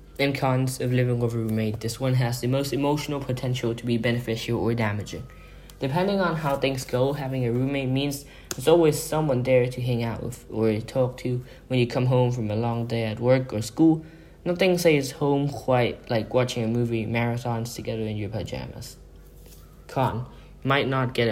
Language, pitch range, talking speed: English, 115-140 Hz, 190 wpm